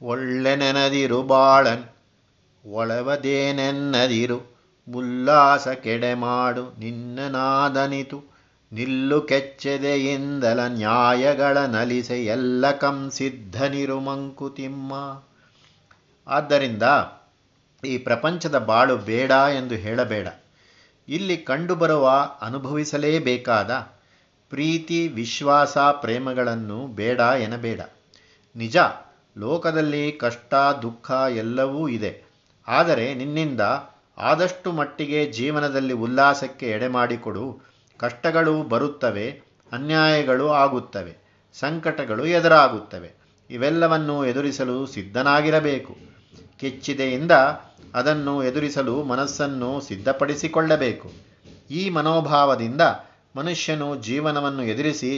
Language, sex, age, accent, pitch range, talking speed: Kannada, male, 50-69, native, 120-145 Hz, 65 wpm